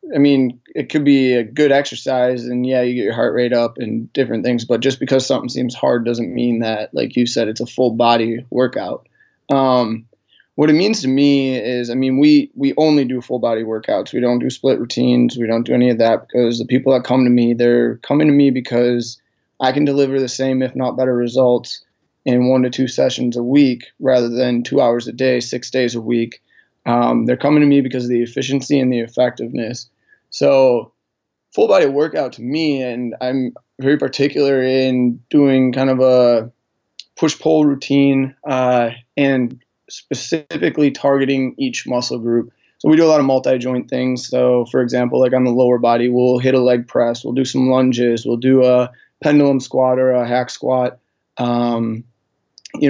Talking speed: 195 wpm